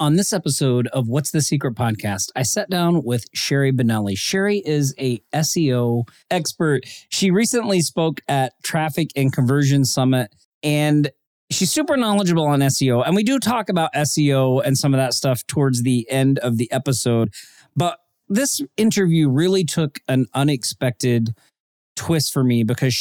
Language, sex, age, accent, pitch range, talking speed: English, male, 40-59, American, 125-160 Hz, 160 wpm